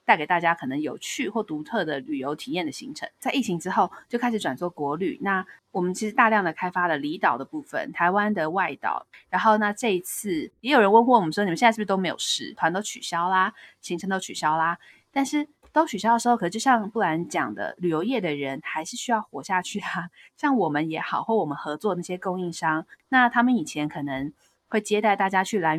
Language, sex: Chinese, female